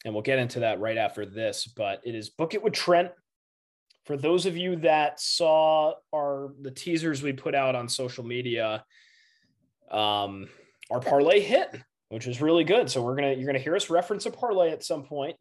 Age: 20-39